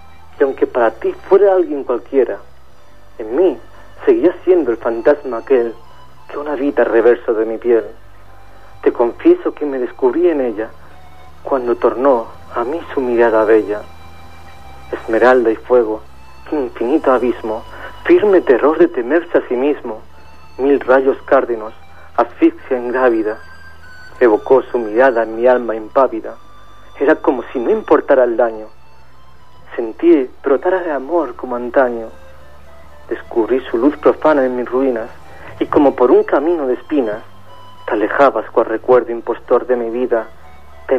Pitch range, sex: 85-140 Hz, male